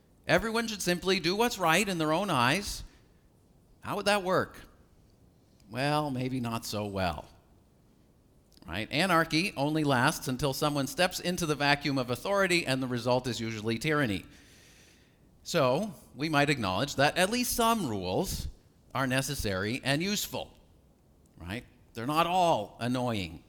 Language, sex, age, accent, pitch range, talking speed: English, male, 50-69, American, 125-175 Hz, 140 wpm